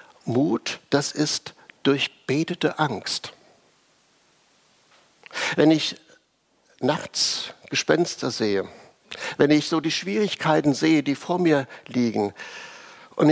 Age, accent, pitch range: 60-79, German, 130-160 Hz